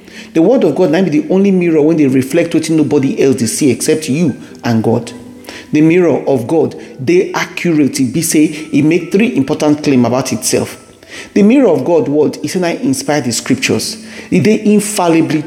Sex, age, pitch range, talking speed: male, 40-59, 135-175 Hz, 190 wpm